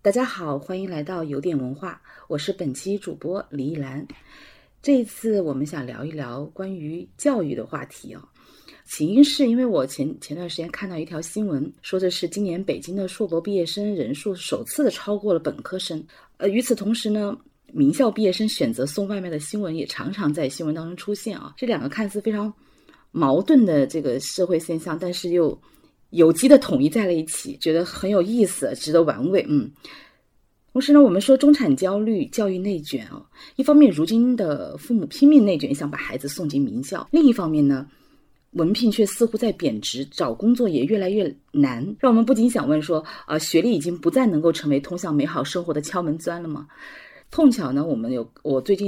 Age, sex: 30-49, female